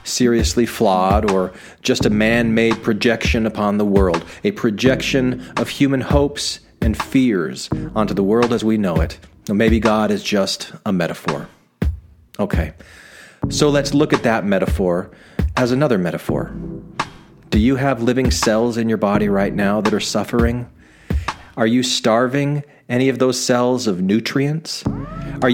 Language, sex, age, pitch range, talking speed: English, male, 40-59, 105-140 Hz, 150 wpm